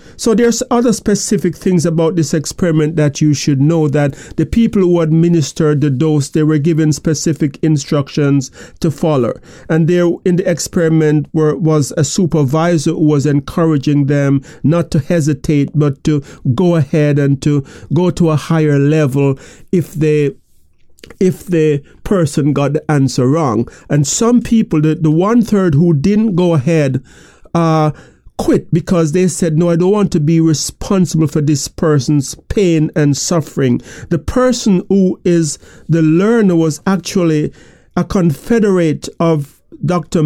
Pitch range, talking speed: 150-185 Hz, 150 wpm